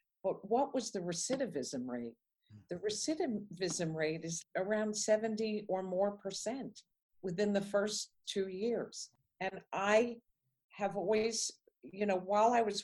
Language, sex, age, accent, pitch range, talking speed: English, female, 50-69, American, 155-215 Hz, 135 wpm